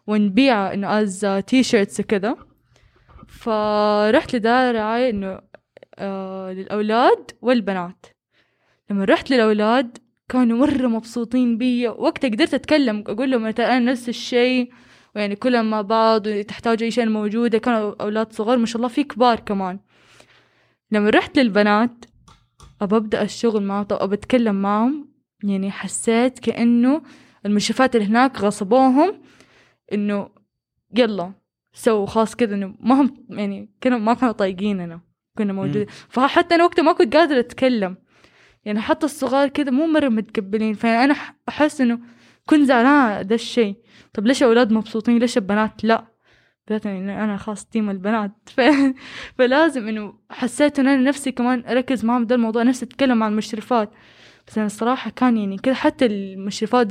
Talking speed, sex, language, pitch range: 135 wpm, female, Arabic, 210-255 Hz